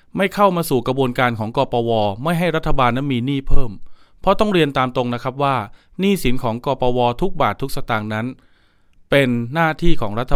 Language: Thai